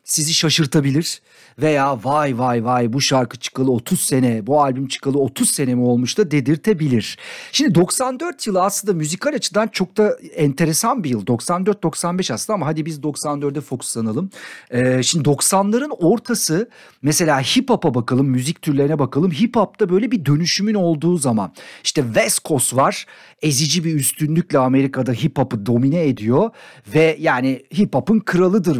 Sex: male